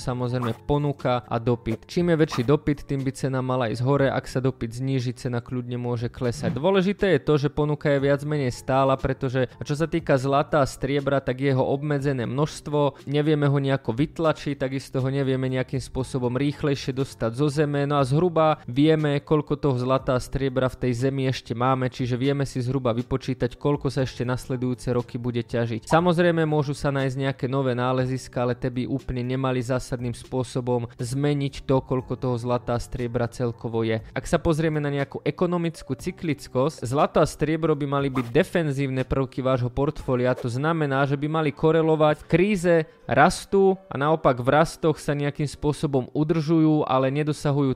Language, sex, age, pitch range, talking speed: Slovak, male, 20-39, 130-150 Hz, 175 wpm